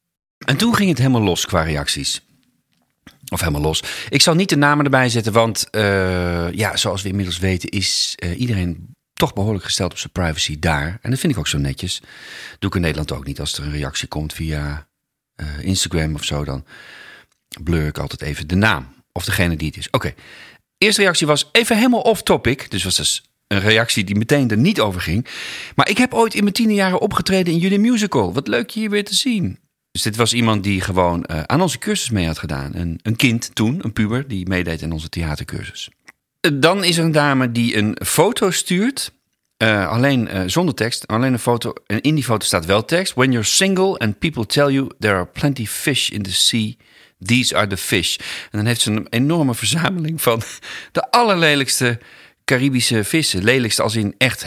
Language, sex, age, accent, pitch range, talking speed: Dutch, male, 40-59, Dutch, 90-145 Hz, 210 wpm